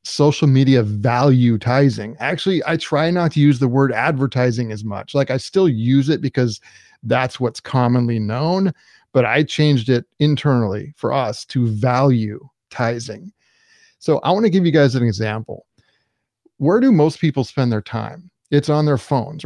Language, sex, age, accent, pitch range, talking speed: English, male, 30-49, American, 120-150 Hz, 170 wpm